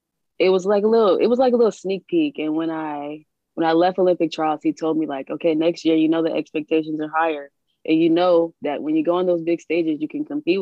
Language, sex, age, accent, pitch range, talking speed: English, female, 20-39, American, 150-170 Hz, 265 wpm